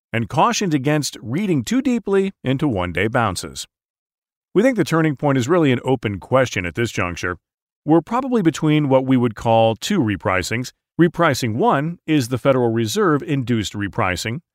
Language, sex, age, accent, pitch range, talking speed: English, male, 40-59, American, 110-160 Hz, 155 wpm